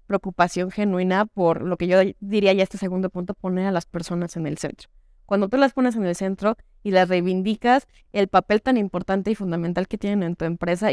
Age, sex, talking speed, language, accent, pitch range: 20-39, female, 215 wpm, Spanish, Mexican, 185-230 Hz